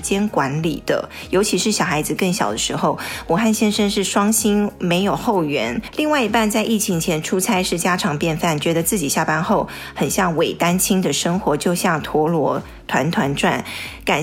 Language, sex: Chinese, female